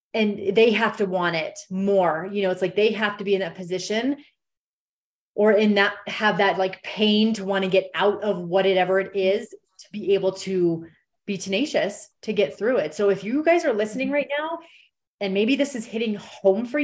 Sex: female